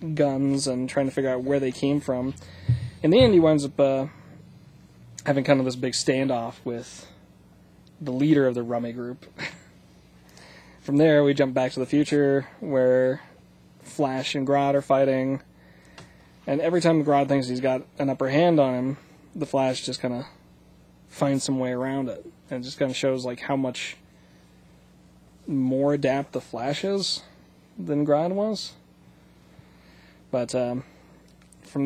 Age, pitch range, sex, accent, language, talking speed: 20-39, 115-140 Hz, male, American, English, 160 wpm